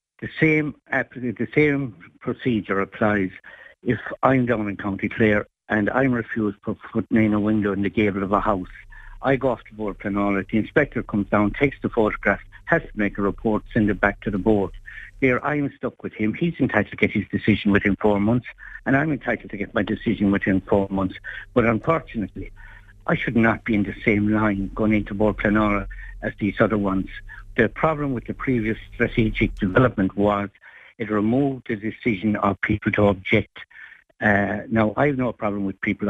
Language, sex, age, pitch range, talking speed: English, male, 60-79, 100-120 Hz, 190 wpm